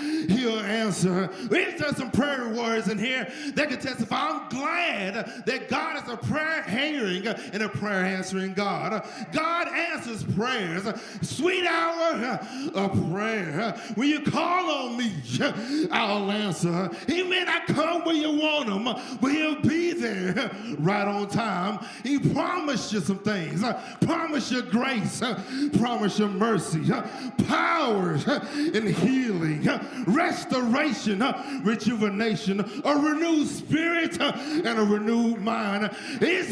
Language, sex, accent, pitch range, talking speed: English, male, American, 210-295 Hz, 130 wpm